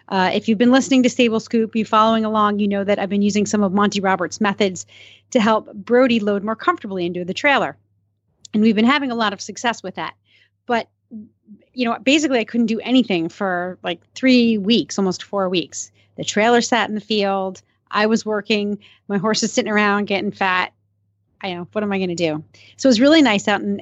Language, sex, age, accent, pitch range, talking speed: English, female, 30-49, American, 185-235 Hz, 220 wpm